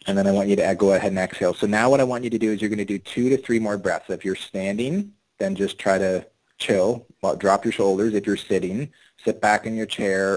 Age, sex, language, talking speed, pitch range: 30-49, male, English, 270 wpm, 95-110 Hz